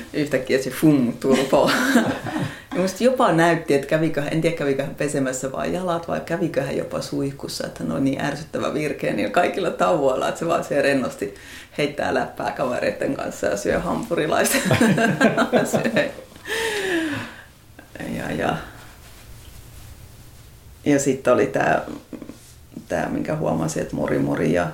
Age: 30-49